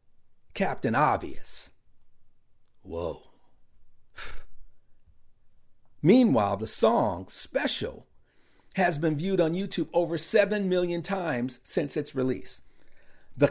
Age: 50-69